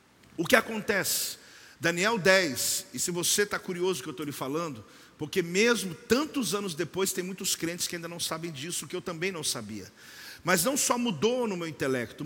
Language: Portuguese